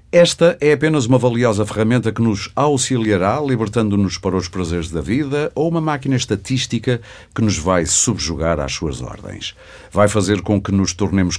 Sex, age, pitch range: male, 50-69, 85-115 Hz